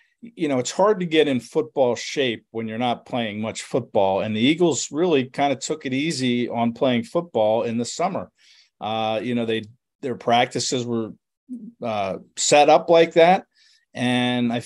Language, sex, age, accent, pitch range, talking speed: English, male, 40-59, American, 115-155 Hz, 180 wpm